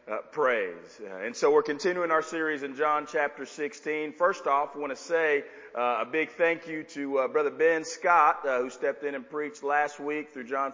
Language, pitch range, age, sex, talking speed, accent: English, 140-195 Hz, 40-59, male, 220 wpm, American